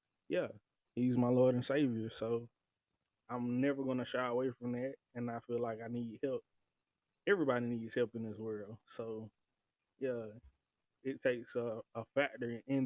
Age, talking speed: 20-39, 165 wpm